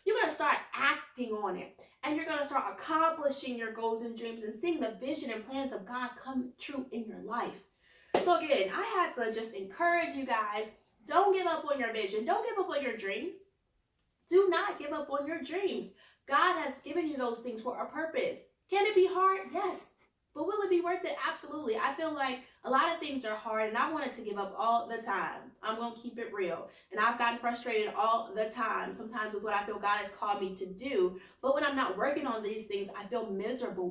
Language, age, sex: English, 20-39, female